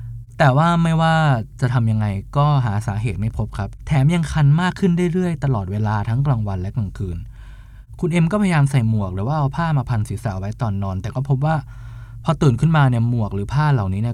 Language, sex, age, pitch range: Thai, male, 20-39, 110-130 Hz